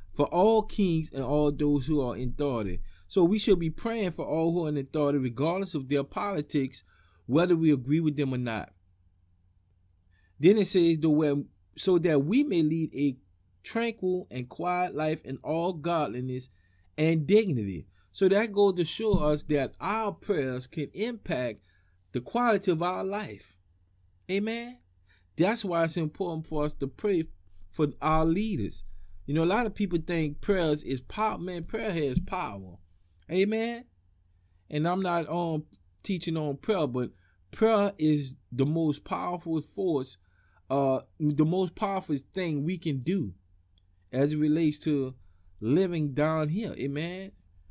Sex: male